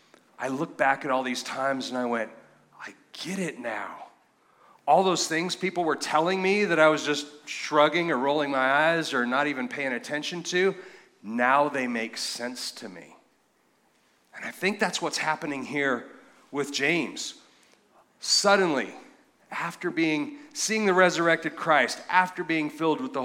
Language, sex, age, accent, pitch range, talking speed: English, male, 40-59, American, 135-190 Hz, 165 wpm